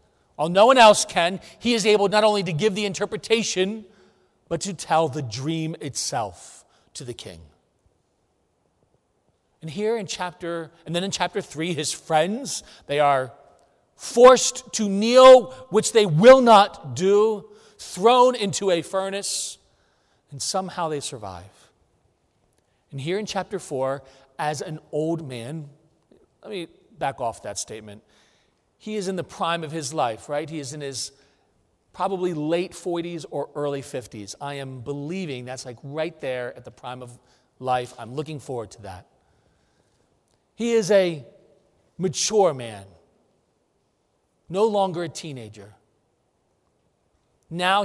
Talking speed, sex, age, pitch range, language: 140 wpm, male, 40-59, 130-195 Hz, English